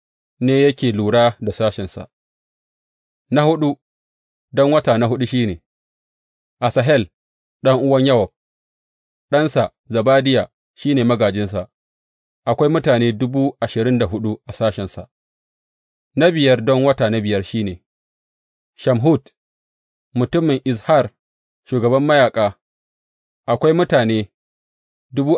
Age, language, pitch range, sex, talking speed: 40-59, English, 110-140 Hz, male, 80 wpm